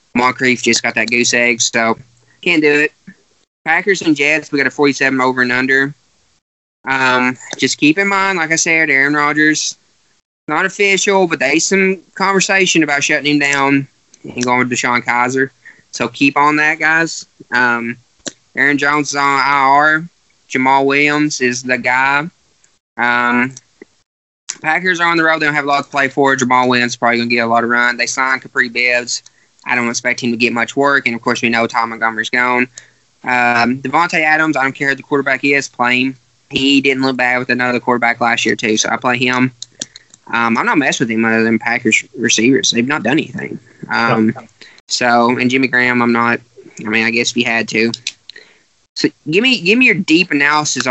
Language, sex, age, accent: English, male, 20-39, American